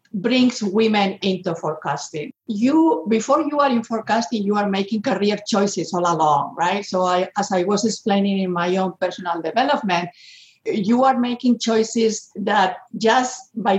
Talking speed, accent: 155 wpm, Spanish